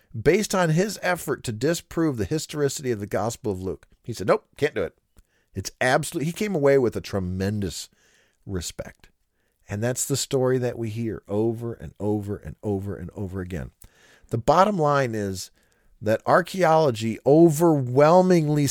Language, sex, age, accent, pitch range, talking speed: English, male, 40-59, American, 105-165 Hz, 160 wpm